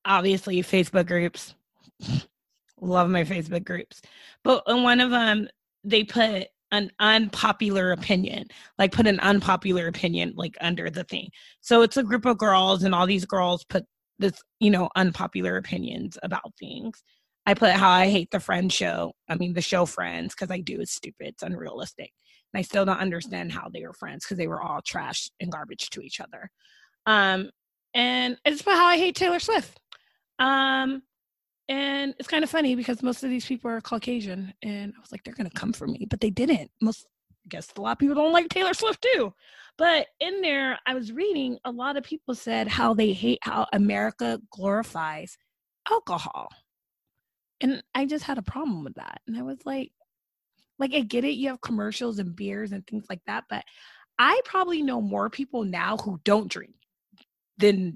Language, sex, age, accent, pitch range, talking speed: English, female, 20-39, American, 190-265 Hz, 190 wpm